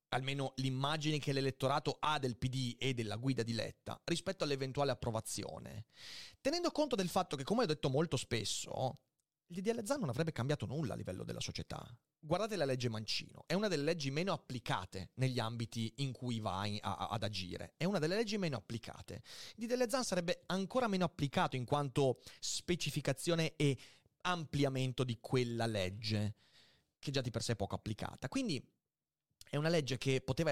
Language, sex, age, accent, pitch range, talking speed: Italian, male, 30-49, native, 120-160 Hz, 170 wpm